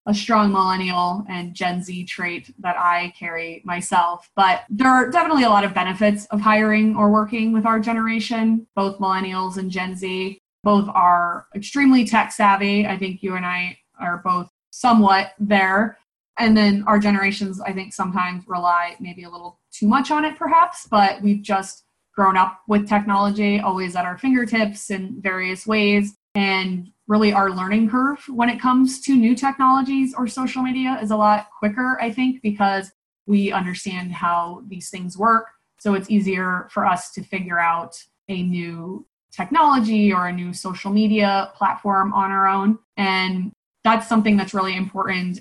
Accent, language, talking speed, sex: American, English, 170 wpm, female